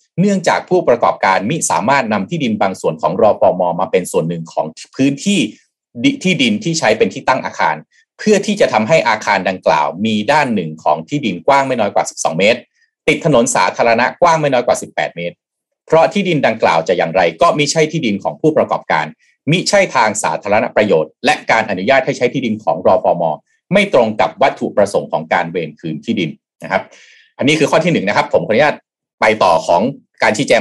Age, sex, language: 30-49, male, Thai